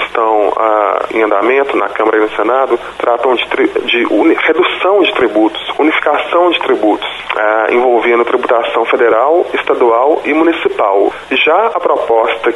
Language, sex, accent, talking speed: English, male, Brazilian, 125 wpm